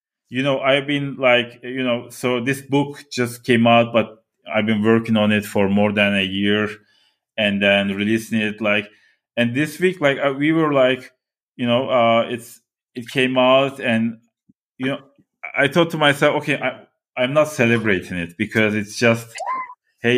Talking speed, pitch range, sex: 180 wpm, 105-130 Hz, male